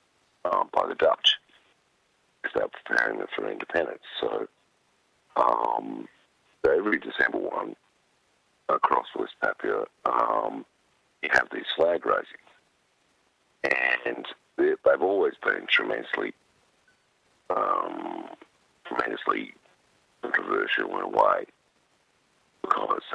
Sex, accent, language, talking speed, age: male, American, English, 95 wpm, 50-69